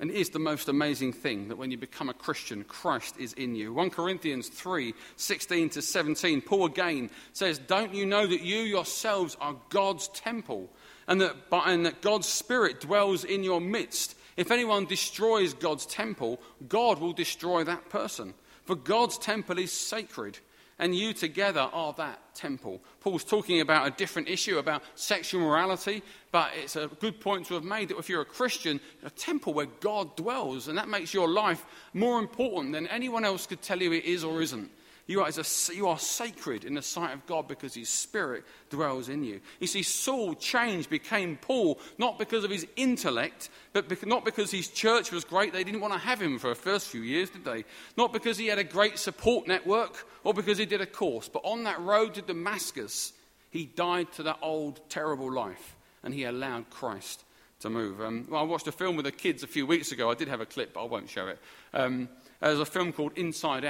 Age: 40-59